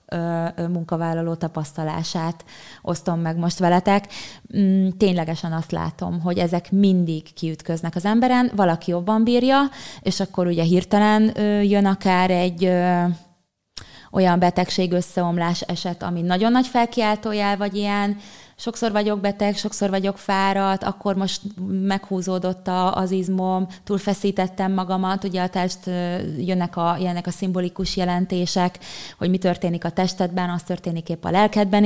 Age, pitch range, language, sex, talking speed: 20-39, 175-200 Hz, Hungarian, female, 125 wpm